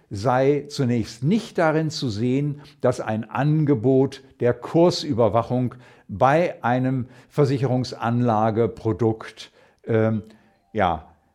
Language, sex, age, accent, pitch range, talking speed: German, male, 60-79, German, 120-155 Hz, 80 wpm